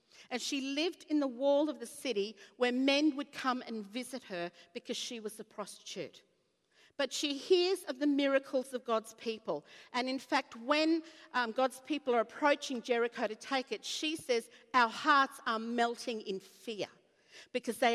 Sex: female